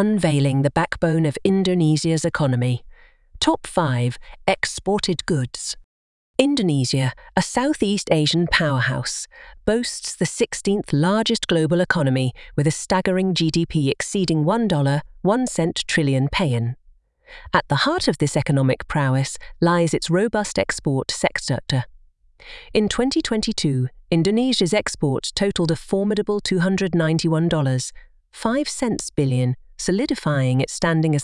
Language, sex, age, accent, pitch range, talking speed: English, female, 40-59, British, 140-200 Hz, 105 wpm